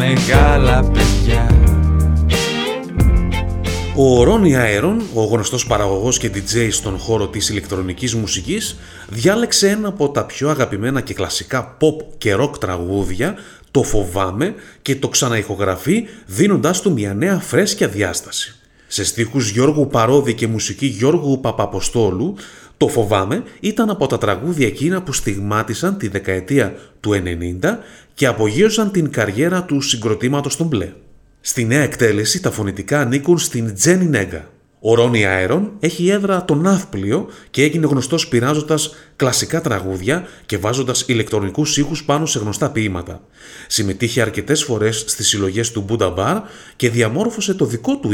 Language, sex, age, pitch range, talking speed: Greek, male, 30-49, 105-150 Hz, 135 wpm